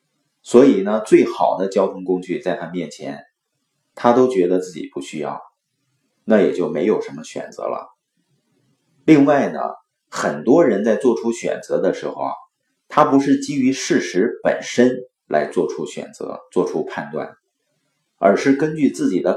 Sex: male